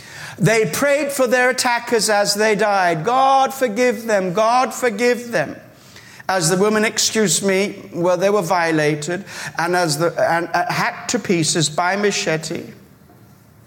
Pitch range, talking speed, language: 155-215 Hz, 135 wpm, English